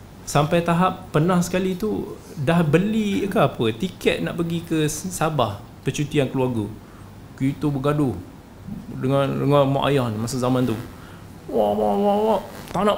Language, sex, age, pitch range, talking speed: Malay, male, 20-39, 115-170 Hz, 145 wpm